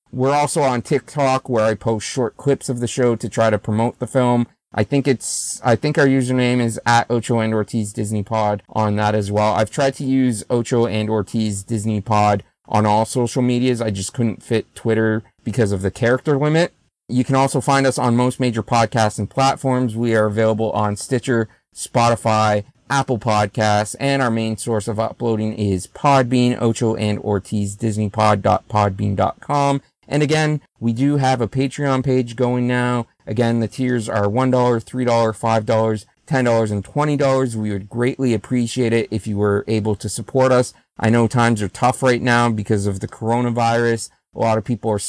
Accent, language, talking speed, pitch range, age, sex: American, English, 180 wpm, 110-130 Hz, 30-49, male